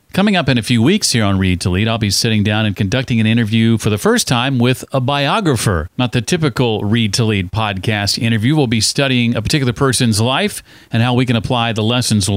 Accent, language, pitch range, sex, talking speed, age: American, English, 95-130 Hz, male, 235 wpm, 40-59